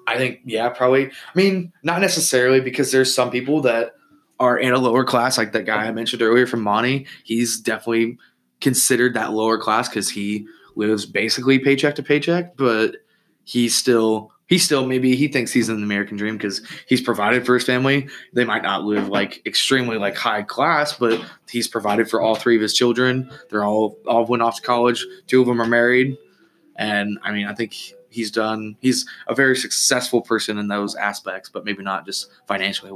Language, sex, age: English, male, 20-39